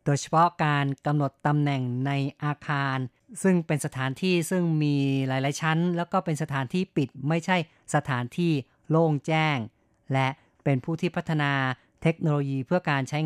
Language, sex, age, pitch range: Thai, female, 20-39, 140-170 Hz